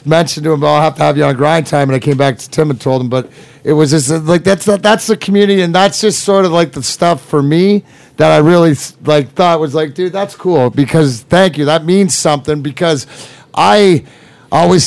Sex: male